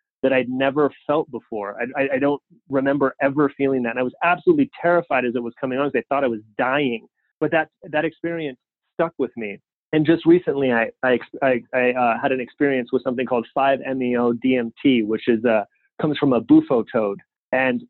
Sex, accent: male, American